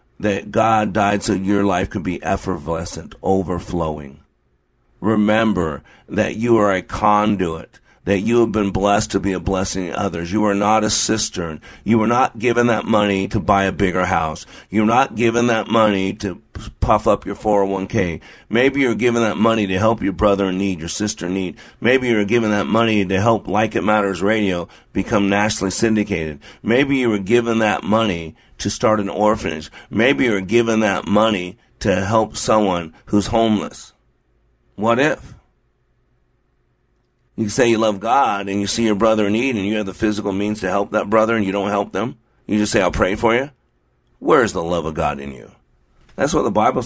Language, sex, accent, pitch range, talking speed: English, male, American, 95-115 Hz, 190 wpm